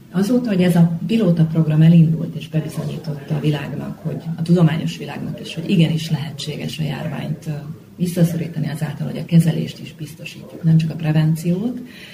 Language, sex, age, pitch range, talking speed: Hungarian, female, 30-49, 155-175 Hz, 155 wpm